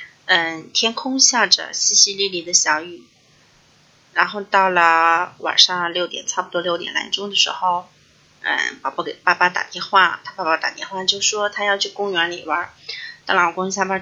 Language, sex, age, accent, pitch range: Chinese, female, 30-49, native, 170-205 Hz